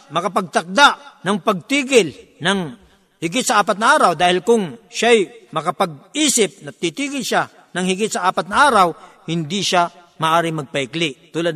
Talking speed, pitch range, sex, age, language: 140 wpm, 160-210 Hz, male, 50-69, Filipino